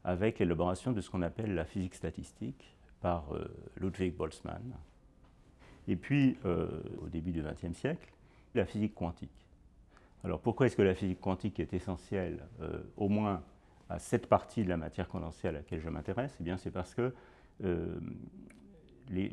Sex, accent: male, French